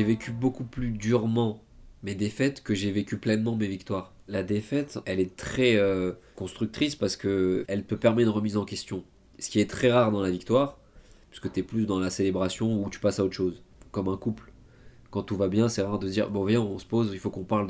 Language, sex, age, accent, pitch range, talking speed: French, male, 20-39, French, 95-120 Hz, 240 wpm